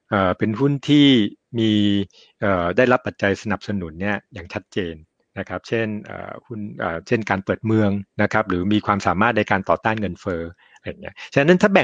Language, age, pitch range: Thai, 60-79, 95-120 Hz